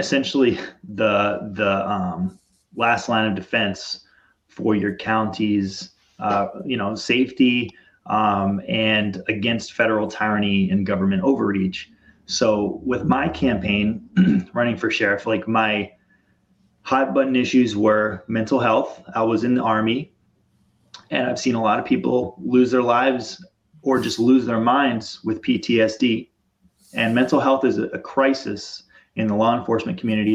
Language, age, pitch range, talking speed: English, 30-49, 110-130 Hz, 140 wpm